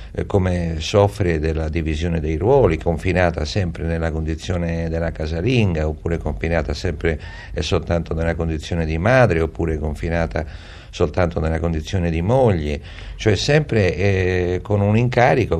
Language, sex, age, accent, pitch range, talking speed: Italian, male, 50-69, native, 80-95 Hz, 130 wpm